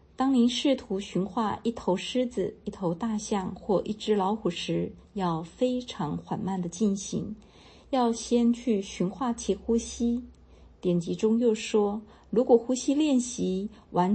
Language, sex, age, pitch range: Chinese, female, 50-69, 180-225 Hz